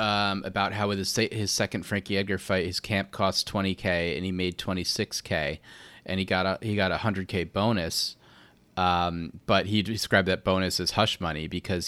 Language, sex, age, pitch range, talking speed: English, male, 30-49, 90-105 Hz, 185 wpm